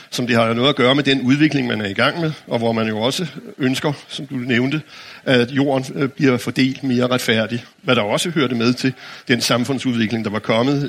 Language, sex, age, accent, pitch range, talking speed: Danish, male, 60-79, native, 120-150 Hz, 220 wpm